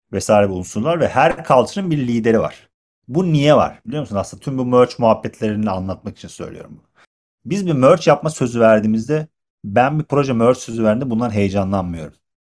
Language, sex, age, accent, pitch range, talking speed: Turkish, male, 40-59, native, 105-135 Hz, 175 wpm